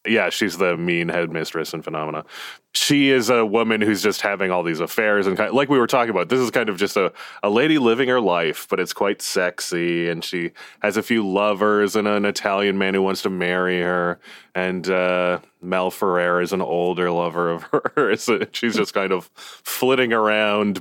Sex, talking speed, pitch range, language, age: male, 205 wpm, 85-105 Hz, English, 20-39